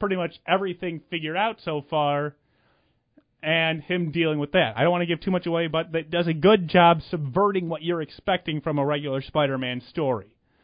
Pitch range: 140-180 Hz